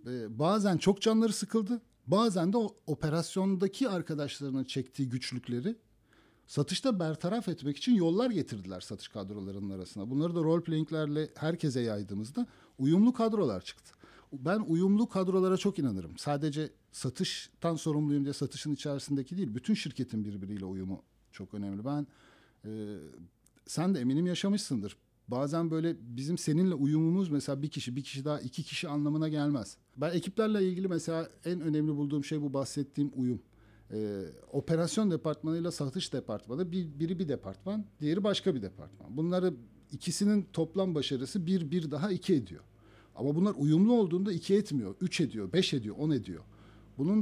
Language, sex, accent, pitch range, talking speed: Turkish, male, native, 130-185 Hz, 145 wpm